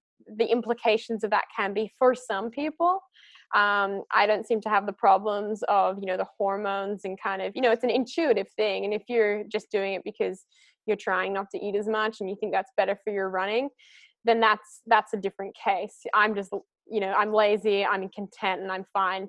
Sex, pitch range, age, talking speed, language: female, 200-245 Hz, 10-29, 220 wpm, English